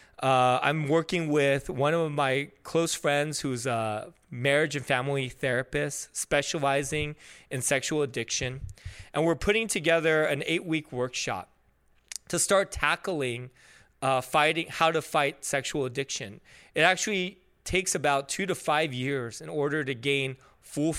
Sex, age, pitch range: male, 20-39, 130-165 Hz